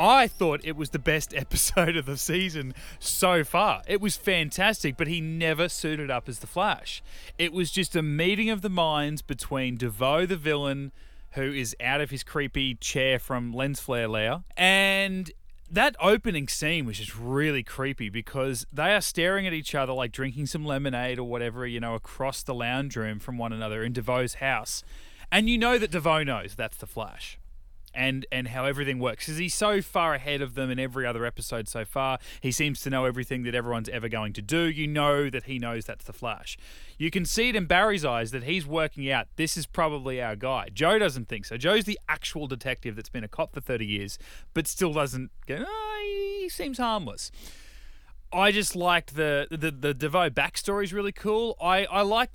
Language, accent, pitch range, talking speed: English, Australian, 125-180 Hz, 205 wpm